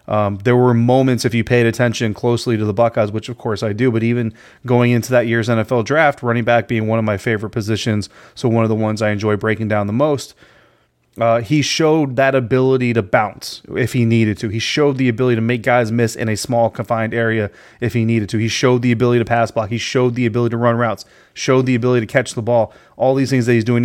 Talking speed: 250 wpm